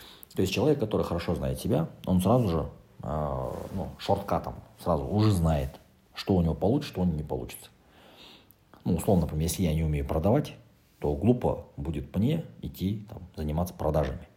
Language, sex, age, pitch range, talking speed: Russian, male, 40-59, 80-105 Hz, 165 wpm